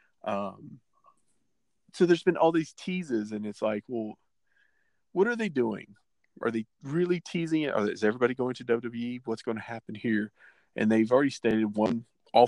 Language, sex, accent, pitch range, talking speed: English, male, American, 105-130 Hz, 185 wpm